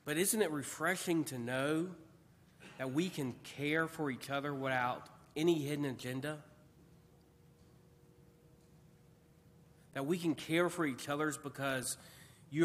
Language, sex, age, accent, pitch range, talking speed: English, male, 40-59, American, 140-170 Hz, 125 wpm